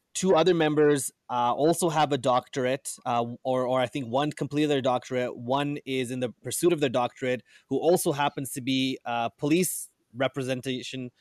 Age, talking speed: 20-39, 175 wpm